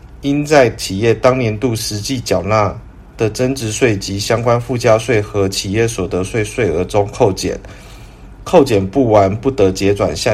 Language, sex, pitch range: Chinese, male, 100-125 Hz